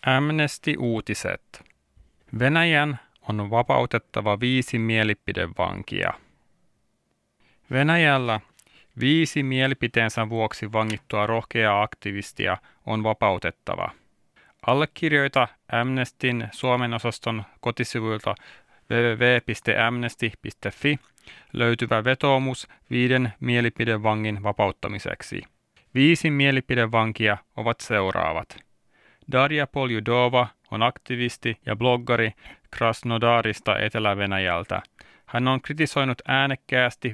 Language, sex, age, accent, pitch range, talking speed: Finnish, male, 30-49, native, 110-125 Hz, 70 wpm